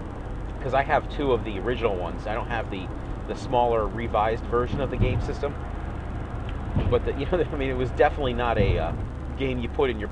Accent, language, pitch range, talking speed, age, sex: American, English, 80-120 Hz, 225 wpm, 30-49, male